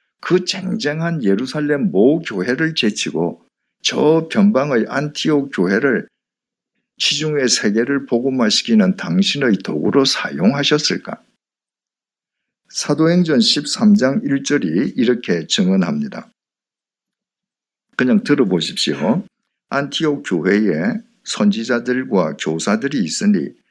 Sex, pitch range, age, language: male, 135-220 Hz, 50-69, Korean